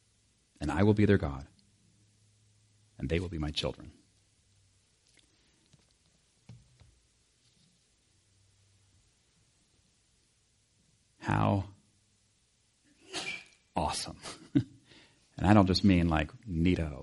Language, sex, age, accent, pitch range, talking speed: English, male, 40-59, American, 85-105 Hz, 75 wpm